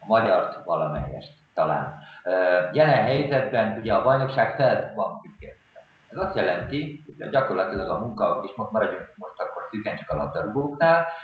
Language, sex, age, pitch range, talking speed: Hungarian, male, 50-69, 105-150 Hz, 145 wpm